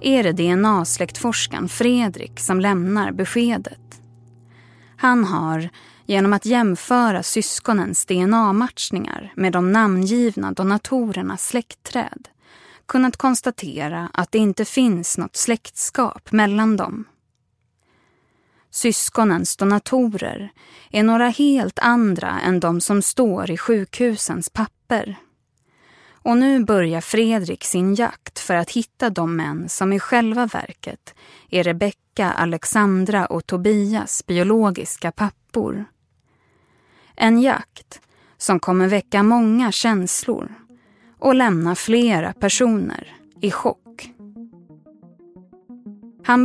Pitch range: 180-235 Hz